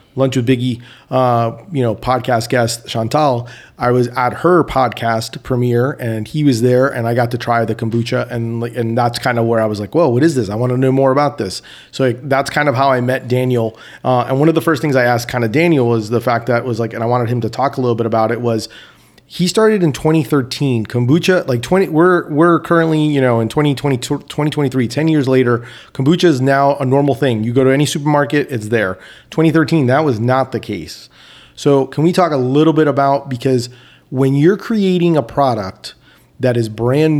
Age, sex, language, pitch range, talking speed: 30-49, male, English, 120-145 Hz, 225 wpm